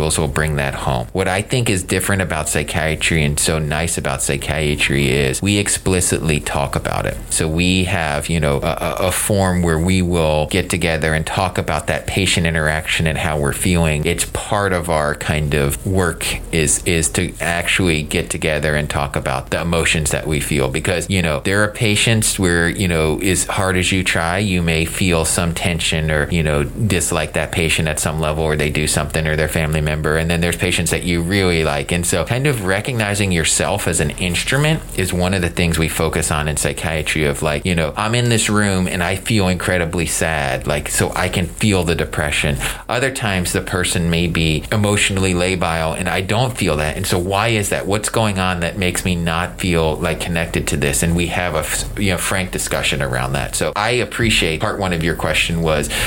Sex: male